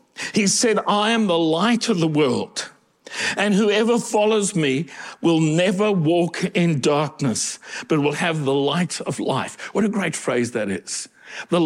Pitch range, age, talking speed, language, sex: 150-195 Hz, 60-79, 165 wpm, English, male